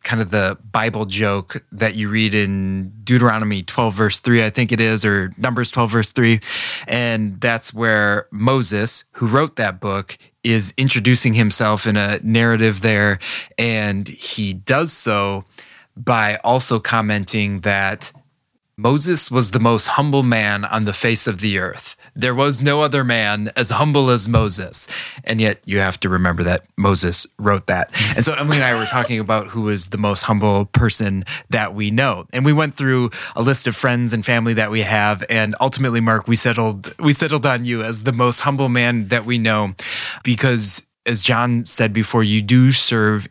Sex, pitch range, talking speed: male, 105-125 Hz, 180 wpm